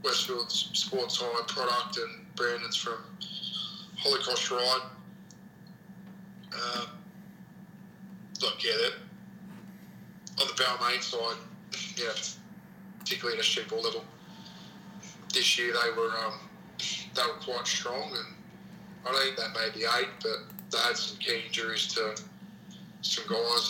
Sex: male